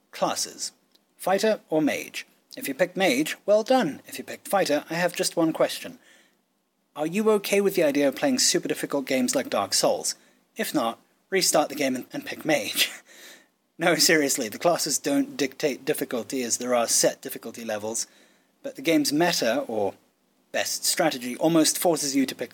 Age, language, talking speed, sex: 30-49, English, 175 wpm, male